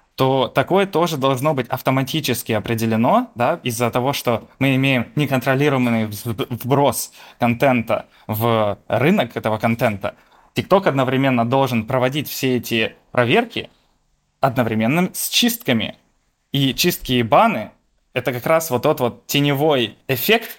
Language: Ukrainian